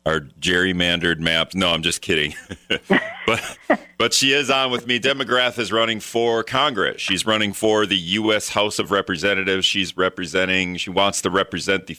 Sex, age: male, 40-59